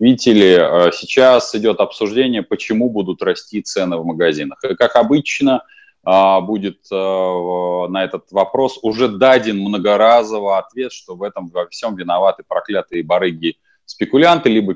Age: 20-39